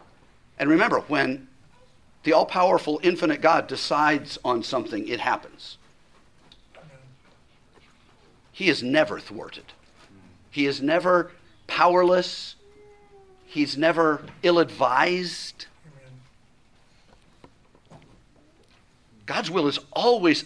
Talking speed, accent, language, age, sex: 80 wpm, American, English, 50-69, male